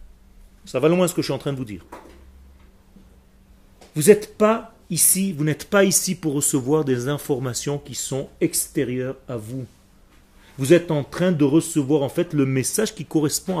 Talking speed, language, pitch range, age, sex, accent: 180 wpm, French, 130-215 Hz, 40-59, male, French